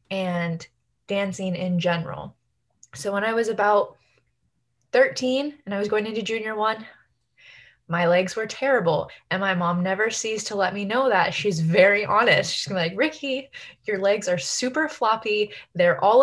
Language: English